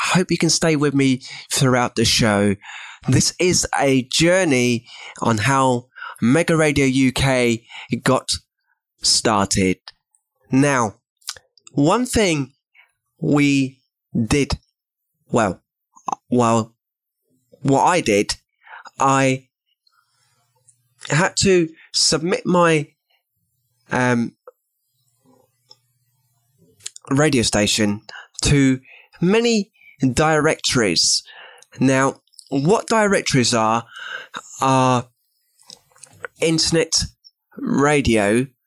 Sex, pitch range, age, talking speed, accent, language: male, 120-145 Hz, 20-39, 75 wpm, British, English